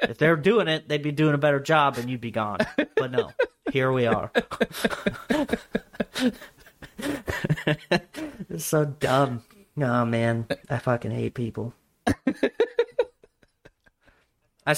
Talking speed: 120 wpm